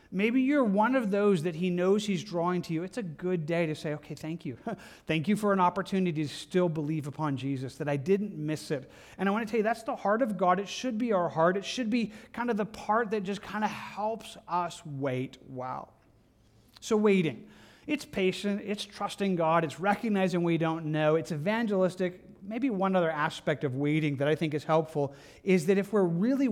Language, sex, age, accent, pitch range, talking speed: English, male, 30-49, American, 155-200 Hz, 220 wpm